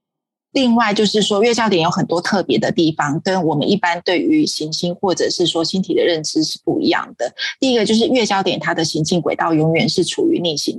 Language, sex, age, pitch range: Chinese, female, 30-49, 170-215 Hz